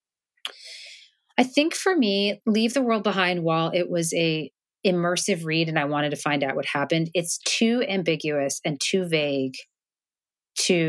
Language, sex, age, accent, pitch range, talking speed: English, female, 30-49, American, 150-180 Hz, 160 wpm